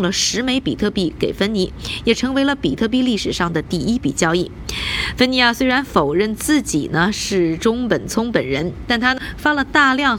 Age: 20-39